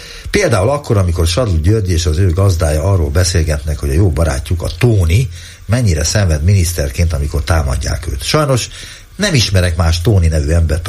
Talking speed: 165 wpm